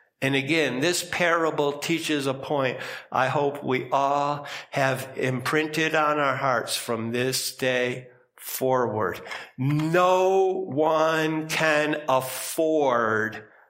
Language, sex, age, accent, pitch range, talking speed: English, male, 50-69, American, 130-160 Hz, 105 wpm